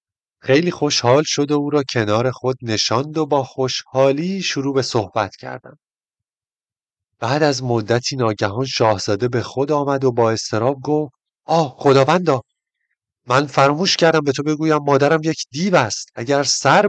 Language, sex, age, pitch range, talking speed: Persian, male, 30-49, 115-150 Hz, 150 wpm